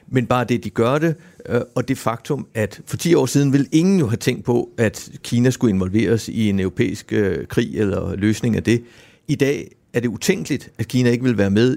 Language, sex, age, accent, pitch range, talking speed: Danish, male, 60-79, native, 110-130 Hz, 225 wpm